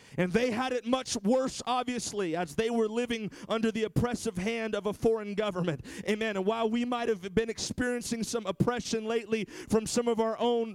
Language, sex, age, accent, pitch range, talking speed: English, male, 40-59, American, 200-240 Hz, 195 wpm